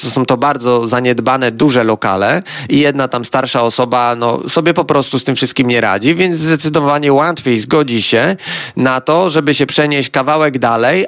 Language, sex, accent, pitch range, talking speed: Polish, male, native, 125-150 Hz, 170 wpm